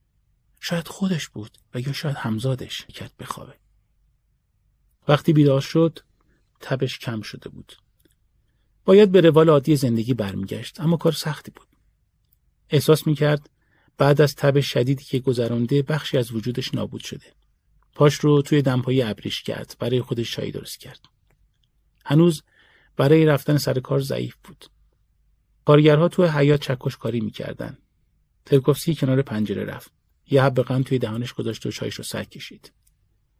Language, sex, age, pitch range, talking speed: Persian, male, 40-59, 120-150 Hz, 140 wpm